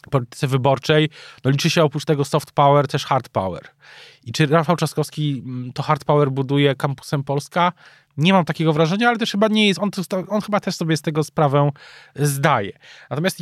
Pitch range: 125-165 Hz